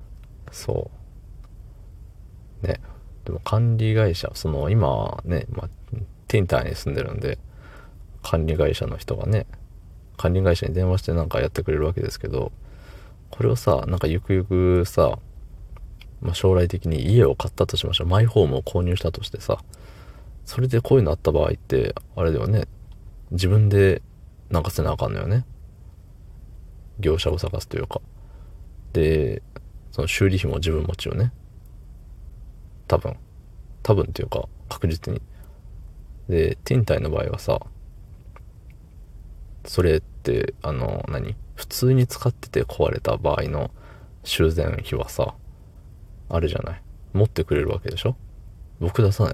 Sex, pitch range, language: male, 85-105 Hz, Japanese